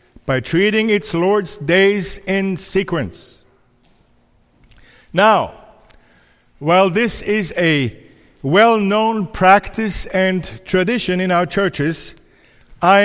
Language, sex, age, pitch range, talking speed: English, male, 50-69, 145-200 Hz, 90 wpm